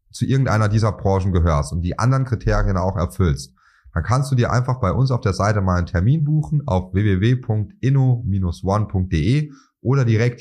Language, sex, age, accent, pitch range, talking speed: German, male, 30-49, German, 90-125 Hz, 165 wpm